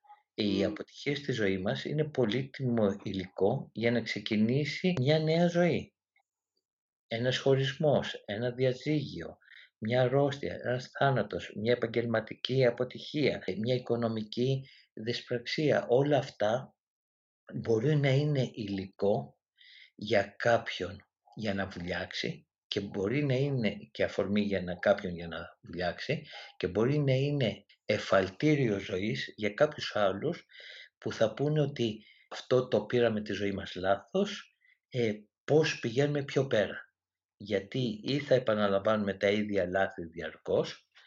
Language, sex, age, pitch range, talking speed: Greek, male, 50-69, 100-135 Hz, 125 wpm